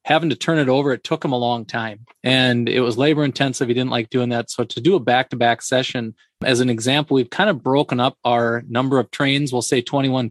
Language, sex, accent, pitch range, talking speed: English, male, American, 120-140 Hz, 245 wpm